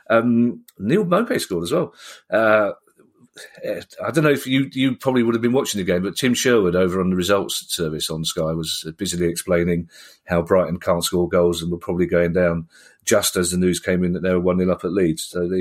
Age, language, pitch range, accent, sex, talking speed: 40-59, English, 90-145 Hz, British, male, 225 wpm